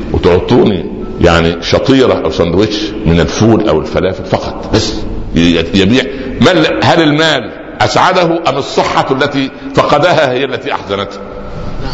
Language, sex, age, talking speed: Arabic, male, 60-79, 115 wpm